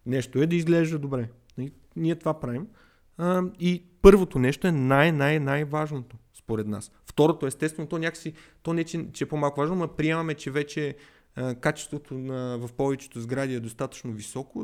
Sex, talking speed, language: male, 155 wpm, Bulgarian